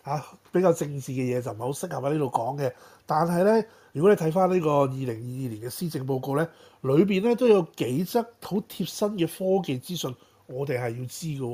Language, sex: Chinese, male